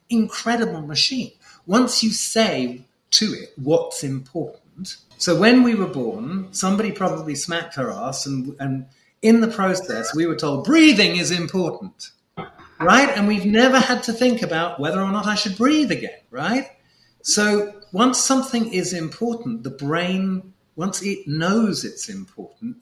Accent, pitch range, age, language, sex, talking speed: British, 145-220 Hz, 40-59, English, male, 155 wpm